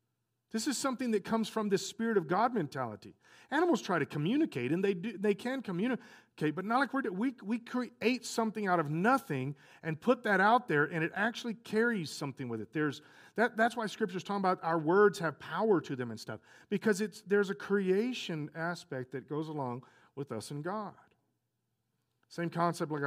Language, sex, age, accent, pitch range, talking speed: English, male, 40-59, American, 125-200 Hz, 205 wpm